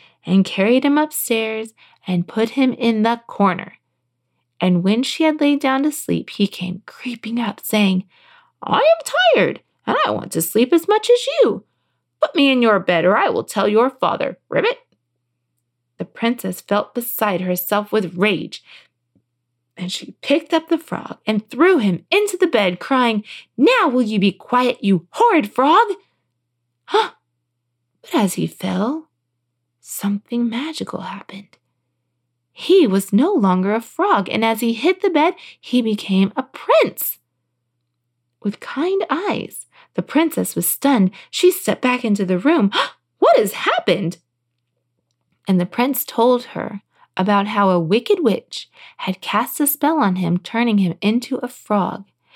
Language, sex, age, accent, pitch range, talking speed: English, female, 20-39, American, 180-265 Hz, 155 wpm